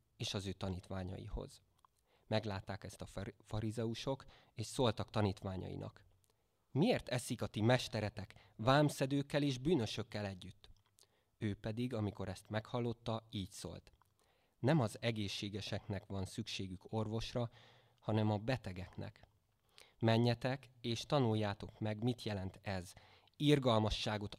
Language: Hungarian